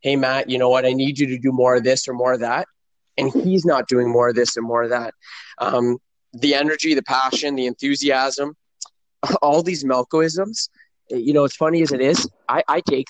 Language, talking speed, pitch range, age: English, 220 wpm, 130-155 Hz, 20-39